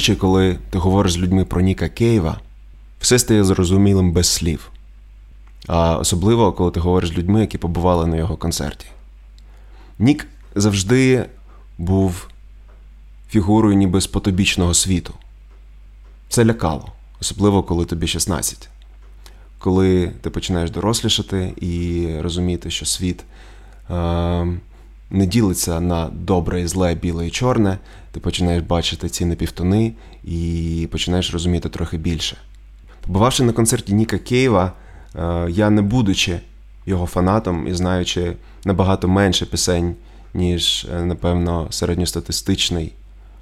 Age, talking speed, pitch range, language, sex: 20-39, 115 wpm, 85-95 Hz, Ukrainian, male